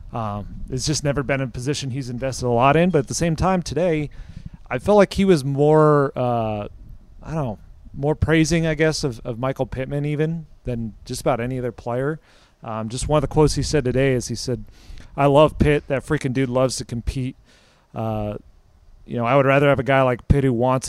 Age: 30-49